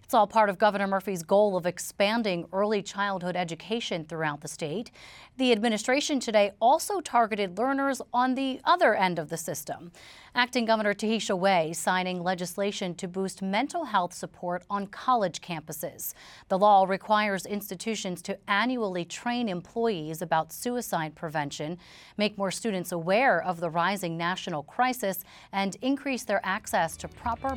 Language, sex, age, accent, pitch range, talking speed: English, female, 30-49, American, 175-230 Hz, 150 wpm